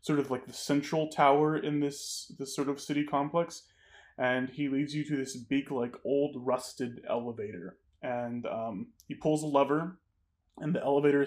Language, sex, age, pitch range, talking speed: English, male, 20-39, 120-145 Hz, 175 wpm